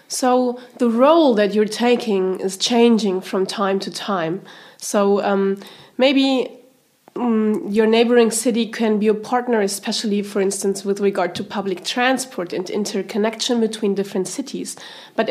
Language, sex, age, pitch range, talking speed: English, female, 30-49, 190-235 Hz, 145 wpm